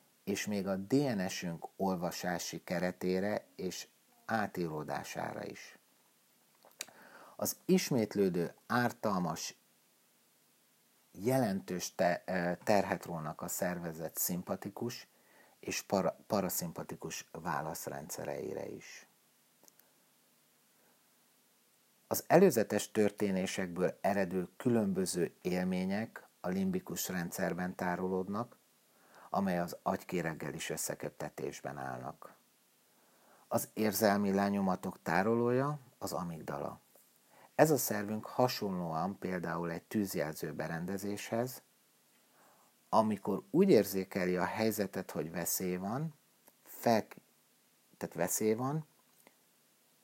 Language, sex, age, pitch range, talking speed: Hungarian, male, 50-69, 90-110 Hz, 75 wpm